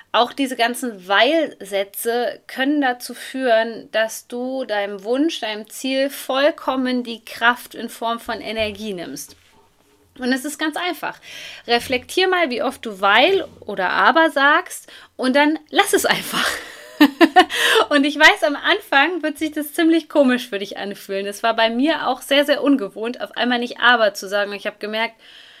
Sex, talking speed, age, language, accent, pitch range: female, 165 wpm, 20-39, German, German, 220-295 Hz